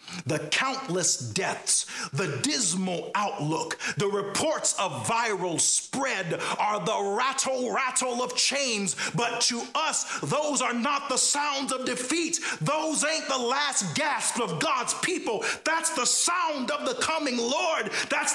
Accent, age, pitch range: American, 40-59, 170-280 Hz